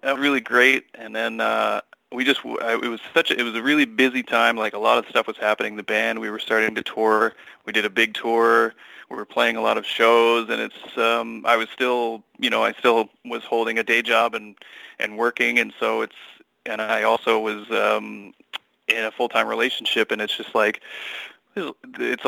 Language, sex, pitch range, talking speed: English, male, 110-120 Hz, 210 wpm